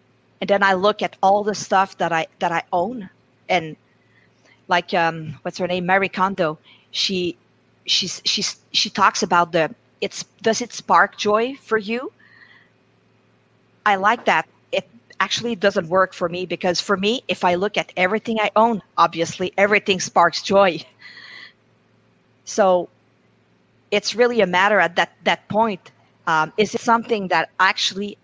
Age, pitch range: 50-69, 175-210 Hz